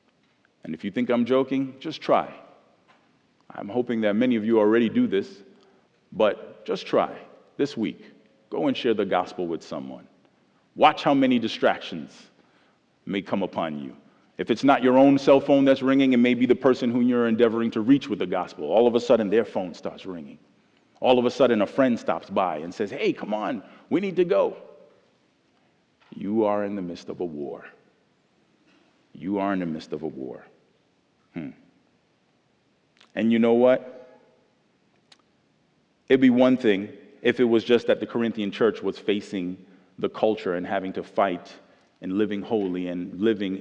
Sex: male